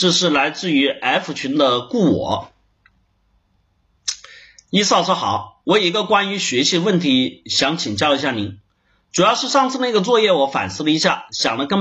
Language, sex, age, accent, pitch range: Chinese, male, 30-49, native, 135-190 Hz